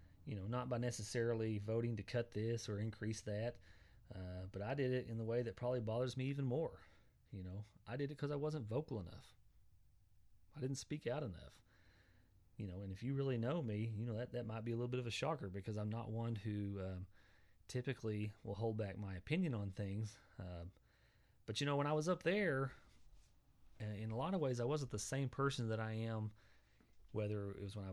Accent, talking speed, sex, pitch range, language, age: American, 220 wpm, male, 100-120 Hz, English, 30-49